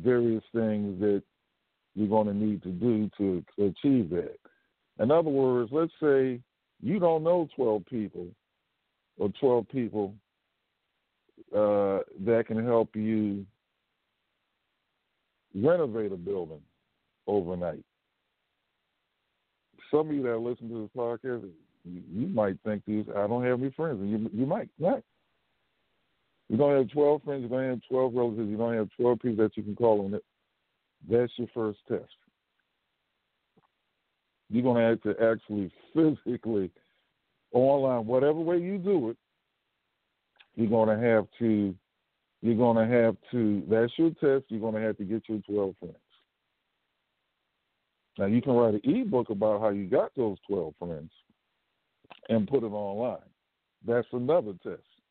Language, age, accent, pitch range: English, 50-69, American, 105-125 Hz